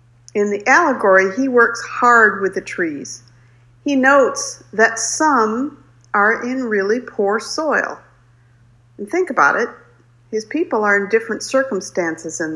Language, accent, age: English, American, 50-69